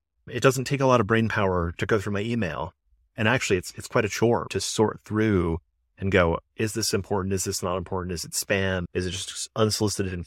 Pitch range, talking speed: 90-105 Hz, 235 wpm